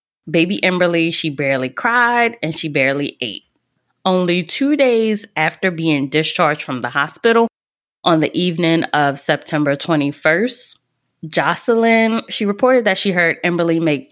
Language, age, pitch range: English, 20-39, 150-190 Hz